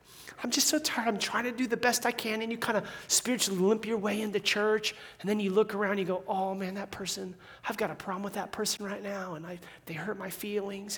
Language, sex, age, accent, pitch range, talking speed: English, male, 30-49, American, 165-200 Hz, 270 wpm